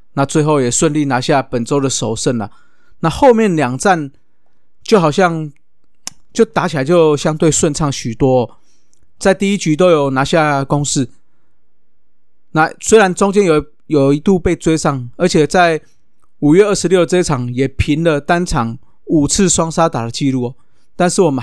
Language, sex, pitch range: Chinese, male, 135-175 Hz